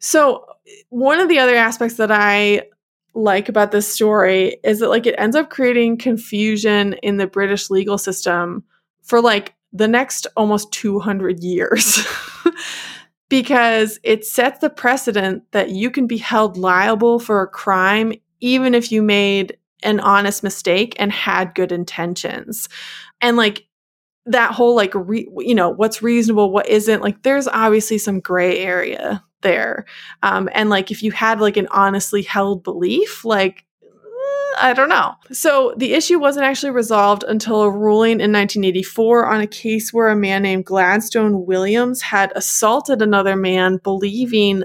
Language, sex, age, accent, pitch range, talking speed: English, female, 20-39, American, 195-235 Hz, 155 wpm